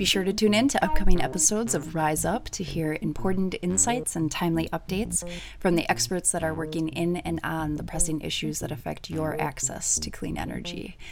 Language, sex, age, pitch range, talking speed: English, female, 30-49, 145-175 Hz, 200 wpm